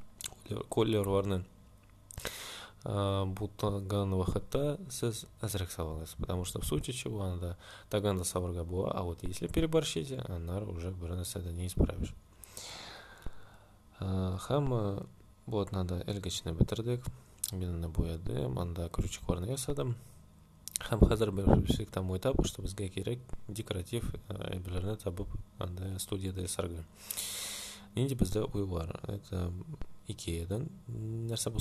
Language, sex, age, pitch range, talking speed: Russian, male, 20-39, 90-110 Hz, 95 wpm